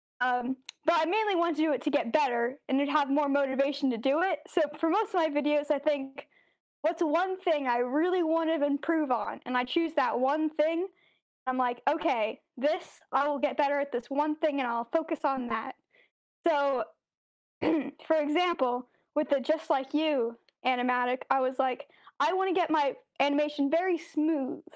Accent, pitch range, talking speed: American, 260-320 Hz, 190 wpm